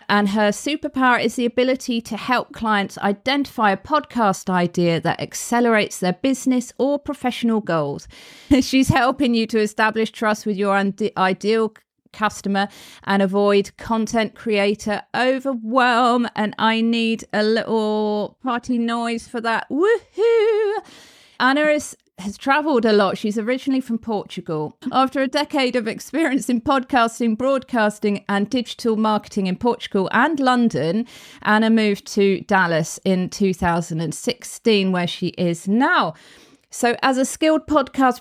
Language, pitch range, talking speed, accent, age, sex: English, 195-250 Hz, 130 wpm, British, 40-59, female